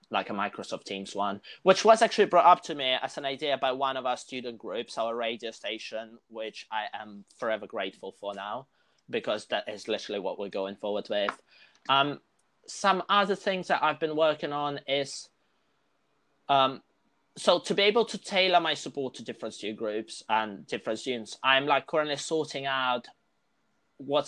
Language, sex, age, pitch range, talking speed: English, male, 20-39, 115-145 Hz, 180 wpm